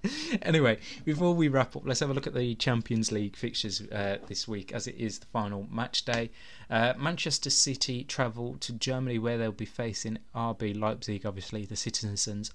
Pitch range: 110-130 Hz